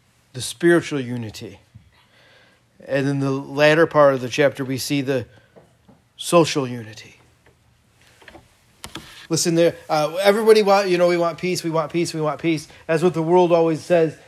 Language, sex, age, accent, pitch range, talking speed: English, male, 40-59, American, 140-175 Hz, 160 wpm